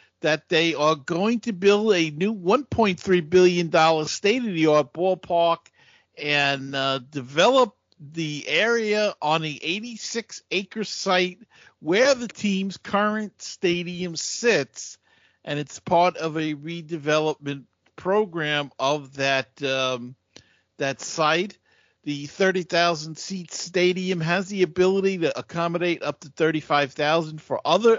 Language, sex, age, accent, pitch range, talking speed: English, male, 50-69, American, 145-190 Hz, 110 wpm